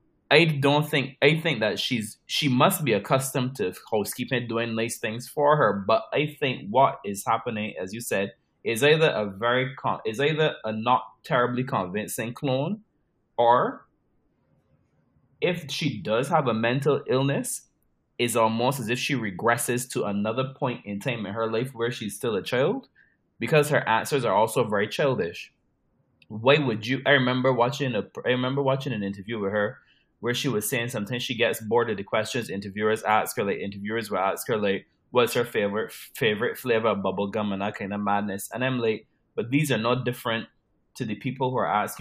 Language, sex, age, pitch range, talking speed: English, male, 20-39, 110-135 Hz, 190 wpm